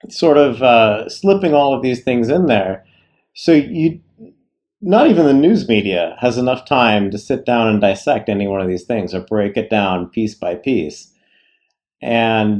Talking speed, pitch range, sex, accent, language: 180 wpm, 100-140 Hz, male, American, English